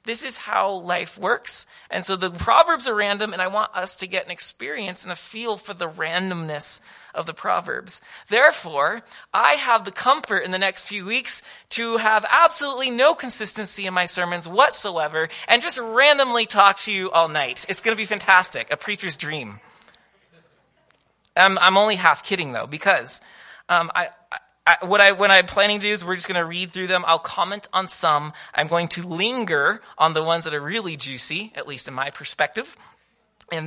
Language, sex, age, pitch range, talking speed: English, male, 30-49, 160-210 Hz, 195 wpm